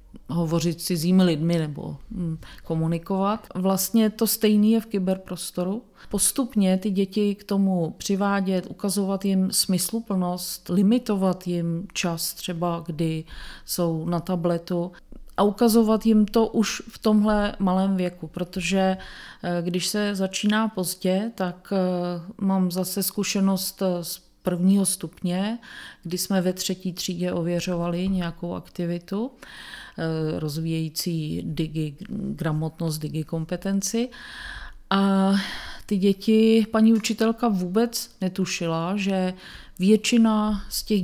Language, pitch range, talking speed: Czech, 175-200 Hz, 110 wpm